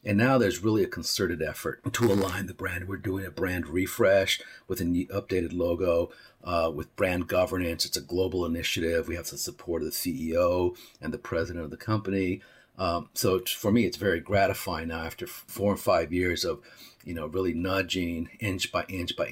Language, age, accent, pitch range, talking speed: English, 50-69, American, 85-100 Hz, 195 wpm